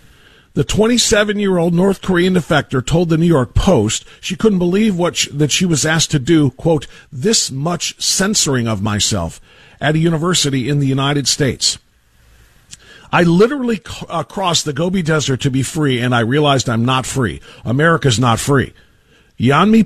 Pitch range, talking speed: 130-175 Hz, 155 wpm